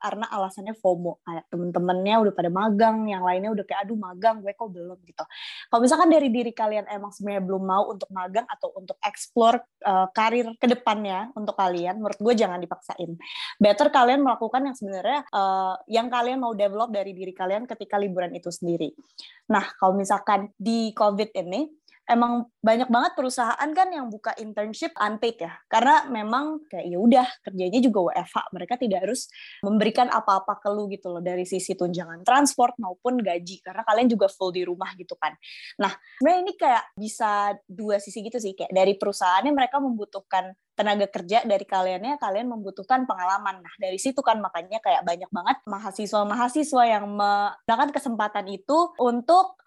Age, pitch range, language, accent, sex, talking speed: 20-39, 190-245 Hz, Indonesian, native, female, 170 wpm